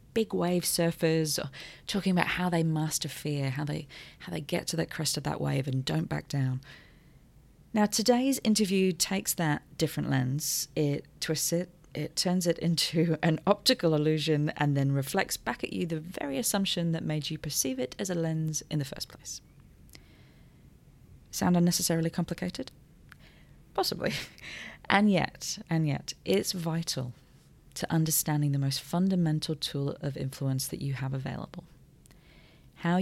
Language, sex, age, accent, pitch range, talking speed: English, female, 30-49, British, 145-180 Hz, 155 wpm